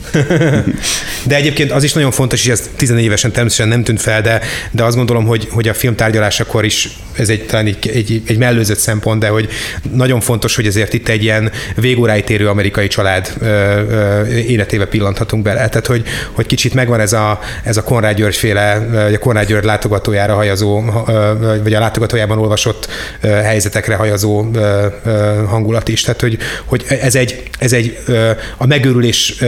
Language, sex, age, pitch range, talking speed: Hungarian, male, 30-49, 110-120 Hz, 165 wpm